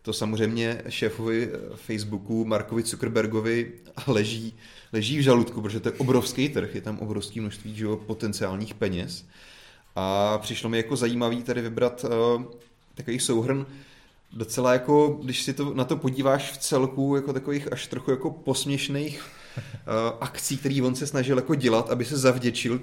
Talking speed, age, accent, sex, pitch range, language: 150 wpm, 30-49, native, male, 100-125 Hz, Czech